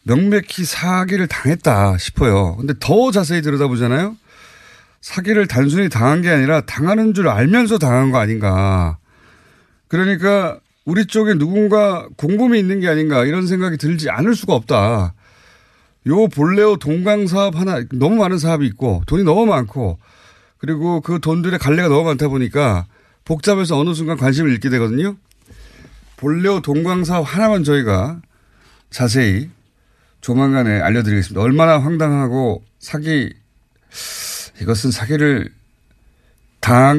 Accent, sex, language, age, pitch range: native, male, Korean, 30-49, 110-170 Hz